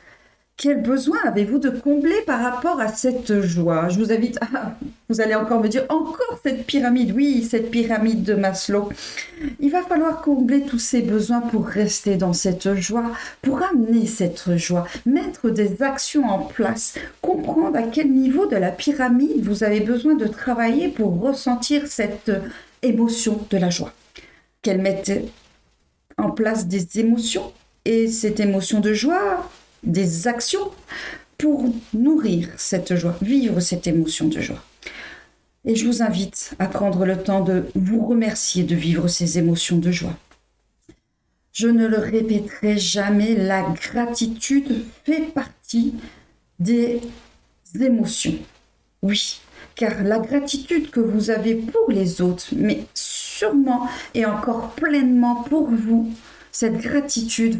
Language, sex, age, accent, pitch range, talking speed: French, female, 50-69, French, 200-265 Hz, 140 wpm